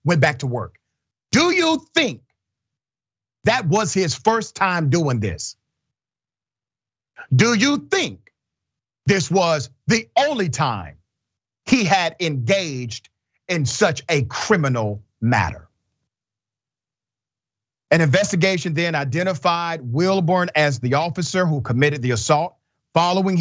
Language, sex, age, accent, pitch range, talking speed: English, male, 40-59, American, 120-175 Hz, 110 wpm